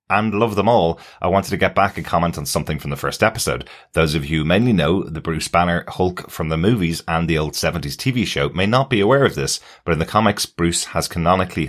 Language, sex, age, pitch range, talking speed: English, male, 30-49, 75-95 Hz, 250 wpm